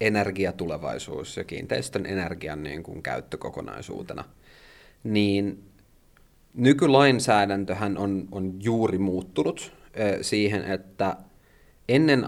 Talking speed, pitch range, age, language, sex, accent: 75 wpm, 95-115 Hz, 30-49, Finnish, male, native